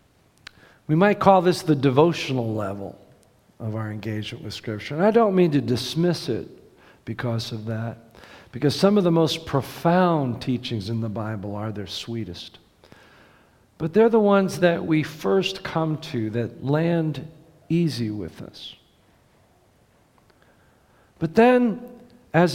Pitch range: 120-170 Hz